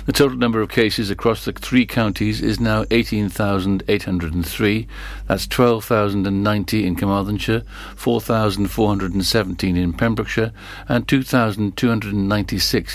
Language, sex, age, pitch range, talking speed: English, male, 60-79, 95-115 Hz, 95 wpm